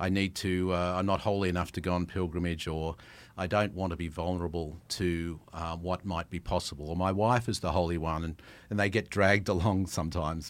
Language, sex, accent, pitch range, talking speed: English, male, Australian, 85-105 Hz, 225 wpm